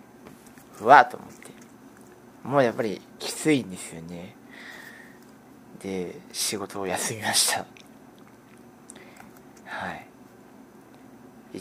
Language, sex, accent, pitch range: Japanese, male, native, 95-115 Hz